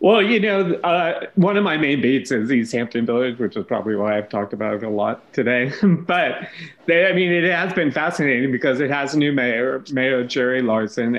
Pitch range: 120-145 Hz